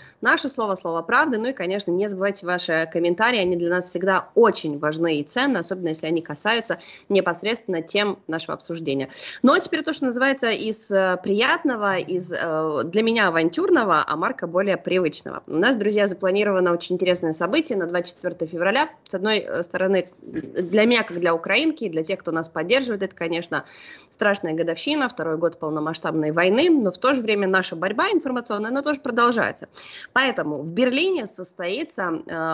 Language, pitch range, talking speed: Russian, 170-230 Hz, 165 wpm